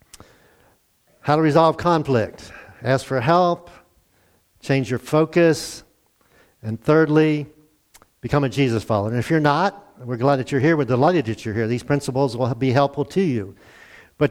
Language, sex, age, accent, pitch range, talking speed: English, male, 50-69, American, 130-170 Hz, 160 wpm